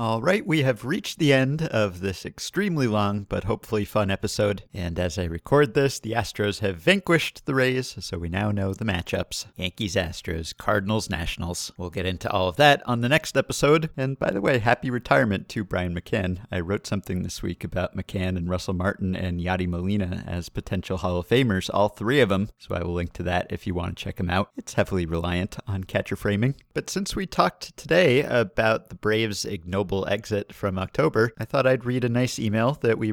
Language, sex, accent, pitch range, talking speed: English, male, American, 95-120 Hz, 210 wpm